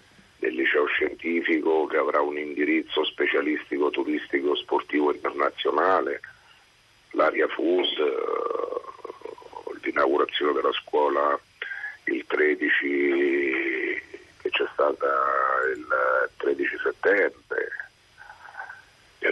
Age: 50-69